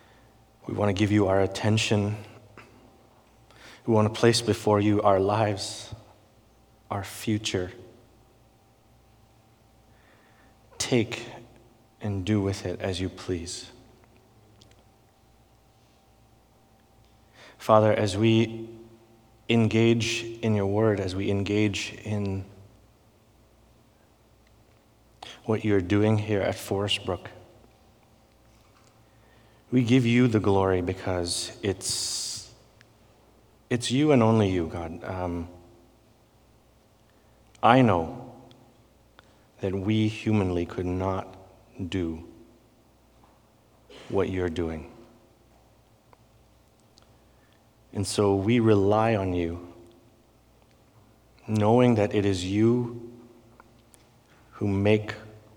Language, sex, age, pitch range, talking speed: English, male, 30-49, 100-115 Hz, 85 wpm